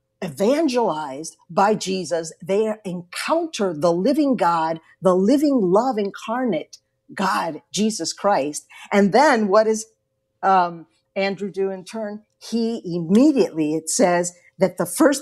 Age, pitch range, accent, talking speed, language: 50-69, 155-200 Hz, American, 120 wpm, English